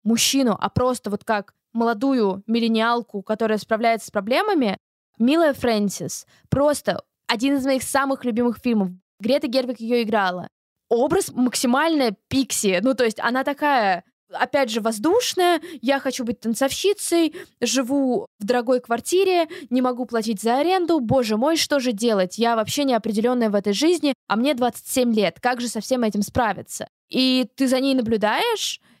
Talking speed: 155 wpm